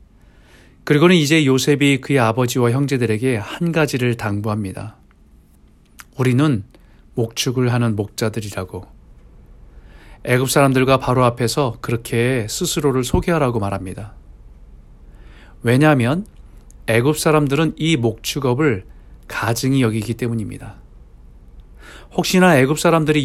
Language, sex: Korean, male